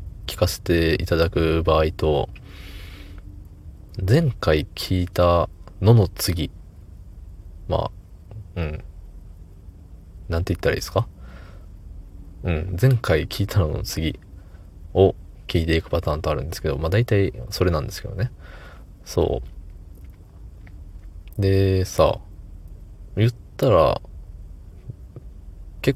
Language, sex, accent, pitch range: Japanese, male, native, 80-100 Hz